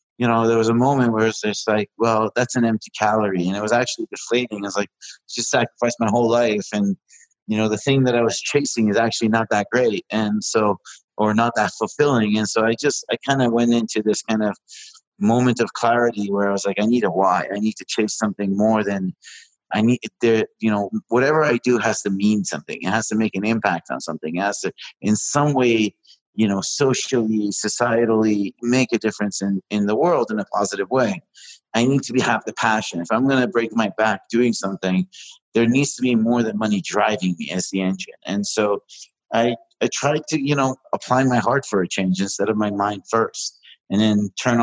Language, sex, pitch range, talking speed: English, male, 105-120 Hz, 230 wpm